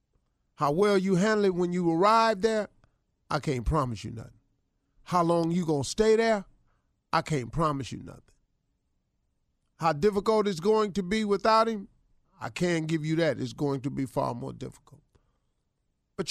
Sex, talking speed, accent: male, 170 wpm, American